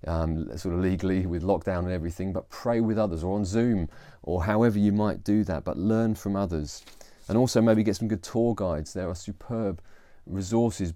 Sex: male